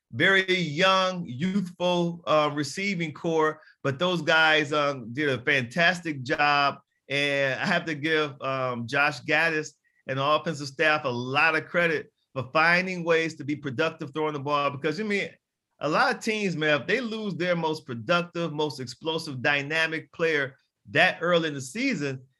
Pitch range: 145-175 Hz